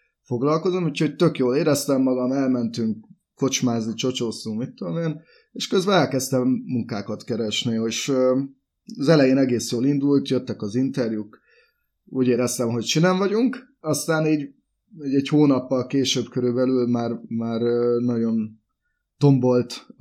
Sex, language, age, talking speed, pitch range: male, Hungarian, 20-39, 125 wpm, 115-140 Hz